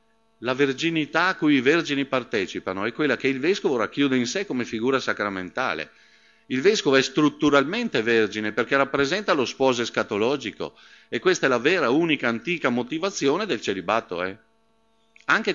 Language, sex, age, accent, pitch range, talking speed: Italian, male, 50-69, native, 115-175 Hz, 155 wpm